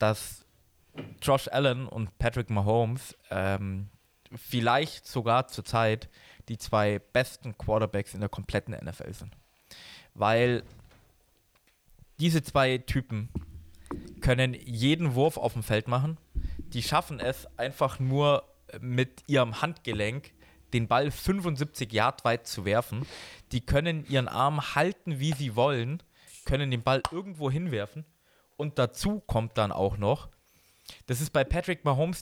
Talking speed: 130 wpm